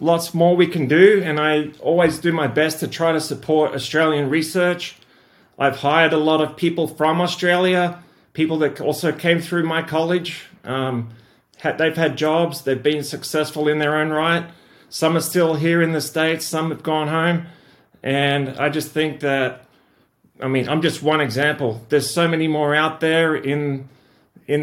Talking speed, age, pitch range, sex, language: 180 wpm, 30-49, 135-165 Hz, male, English